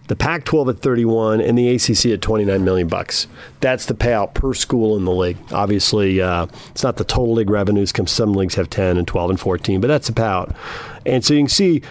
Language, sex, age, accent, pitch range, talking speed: English, male, 40-59, American, 105-145 Hz, 220 wpm